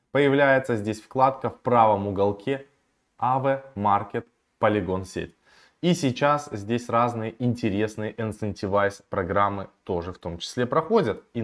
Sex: male